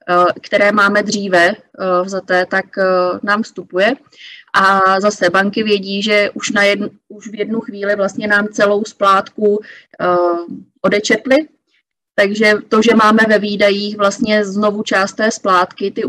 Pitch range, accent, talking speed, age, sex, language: 185-210 Hz, native, 125 wpm, 20-39, female, Czech